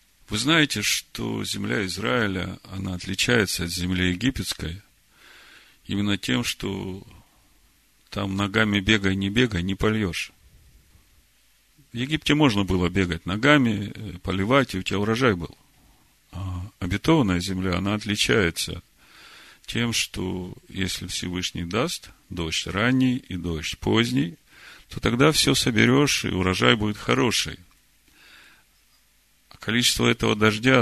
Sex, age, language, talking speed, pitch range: male, 40-59, Russian, 115 wpm, 90-115 Hz